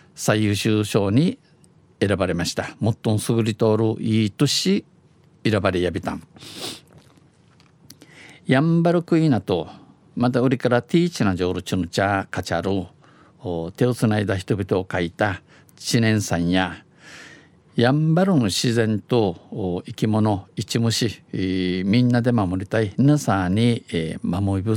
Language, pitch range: Japanese, 100-135 Hz